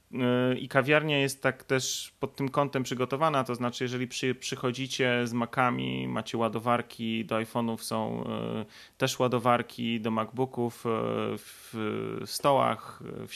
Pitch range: 110-130 Hz